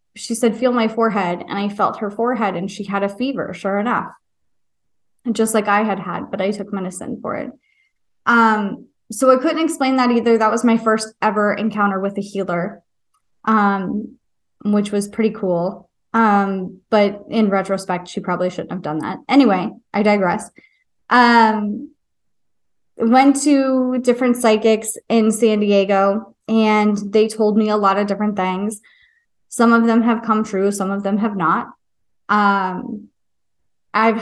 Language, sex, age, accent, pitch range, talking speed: English, female, 20-39, American, 195-230 Hz, 160 wpm